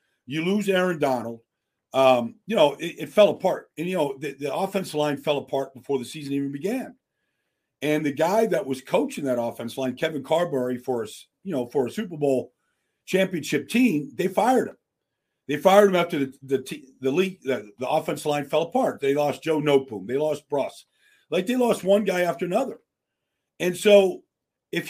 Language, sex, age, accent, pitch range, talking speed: English, male, 50-69, American, 140-190 Hz, 195 wpm